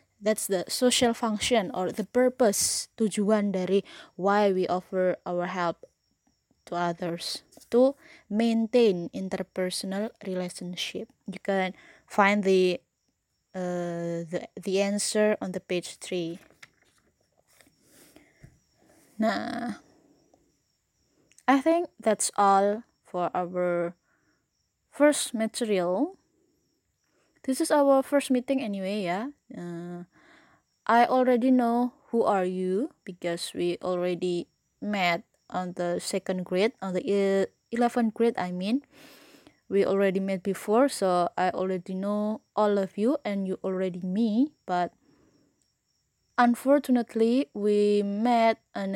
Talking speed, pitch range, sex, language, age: 110 wpm, 185-240 Hz, female, English, 20-39